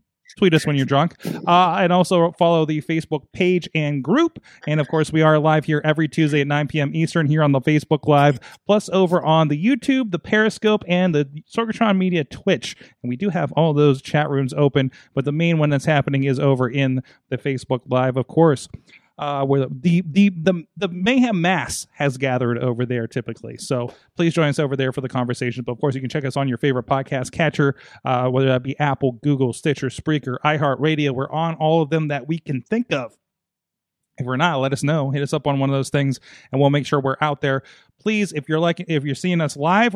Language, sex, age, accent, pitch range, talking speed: English, male, 30-49, American, 140-185 Hz, 225 wpm